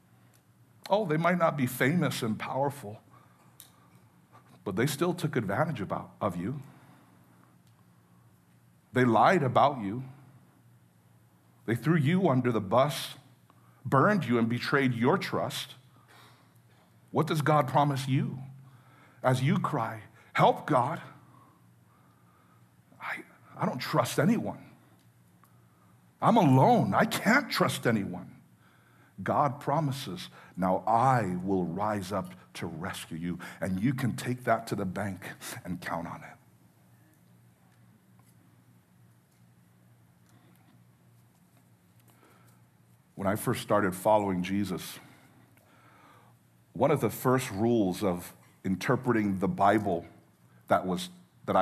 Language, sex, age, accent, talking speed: English, male, 60-79, American, 105 wpm